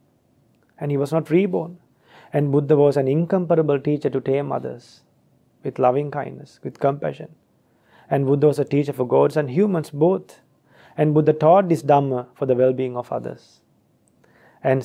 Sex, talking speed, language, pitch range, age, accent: male, 160 wpm, English, 125-170 Hz, 30-49, Indian